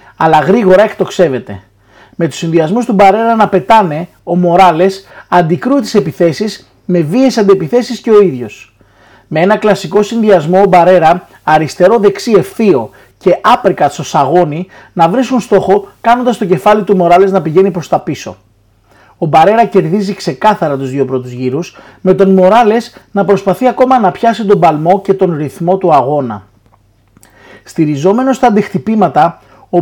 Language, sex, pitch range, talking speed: Greek, male, 160-210 Hz, 145 wpm